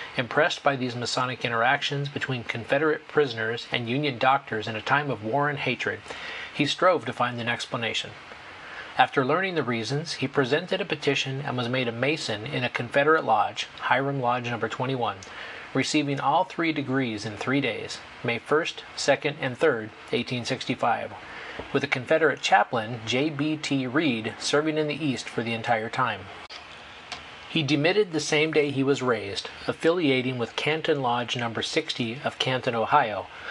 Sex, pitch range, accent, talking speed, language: male, 120-145 Hz, American, 160 wpm, English